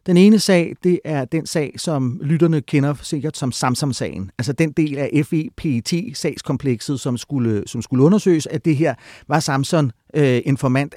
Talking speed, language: 170 wpm, Danish